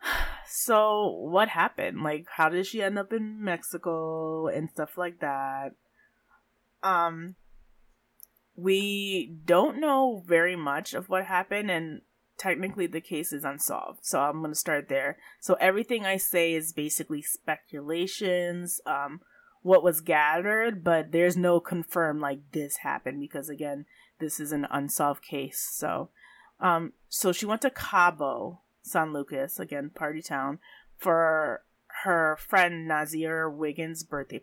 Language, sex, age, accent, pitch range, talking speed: English, female, 20-39, American, 160-210 Hz, 140 wpm